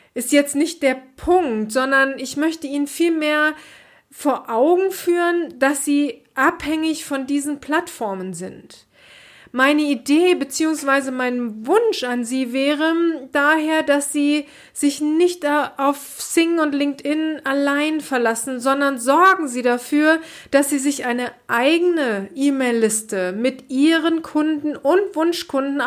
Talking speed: 125 wpm